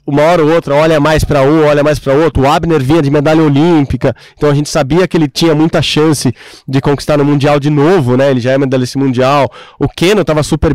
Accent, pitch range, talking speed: Brazilian, 145-190 Hz, 245 wpm